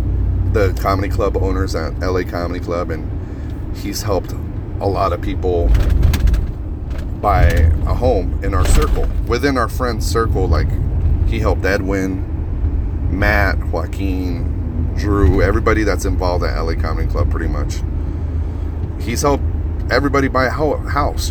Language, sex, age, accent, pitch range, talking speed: English, male, 30-49, American, 85-105 Hz, 130 wpm